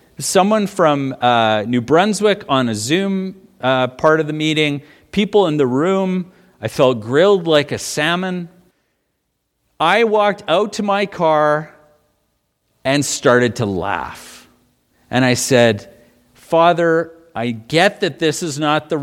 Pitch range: 115-180 Hz